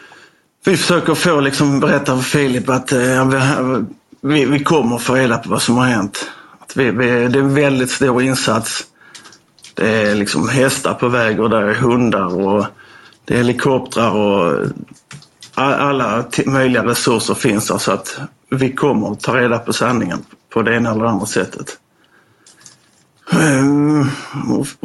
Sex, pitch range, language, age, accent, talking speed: male, 120-145 Hz, Swedish, 50-69, native, 160 wpm